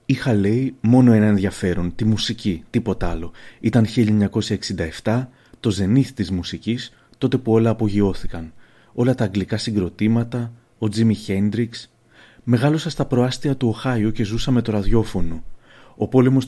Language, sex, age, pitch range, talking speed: Greek, male, 30-49, 105-125 Hz, 140 wpm